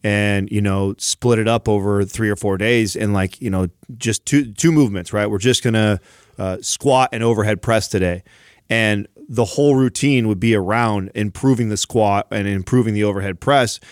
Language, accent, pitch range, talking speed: English, American, 105-125 Hz, 195 wpm